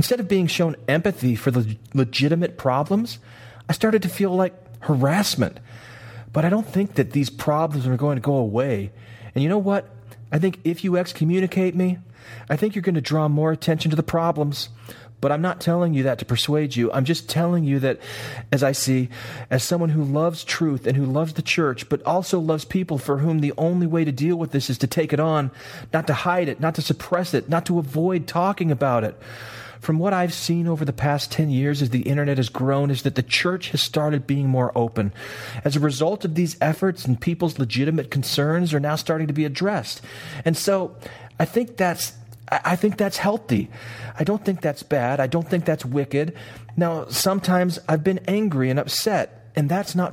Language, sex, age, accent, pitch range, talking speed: English, male, 40-59, American, 130-170 Hz, 210 wpm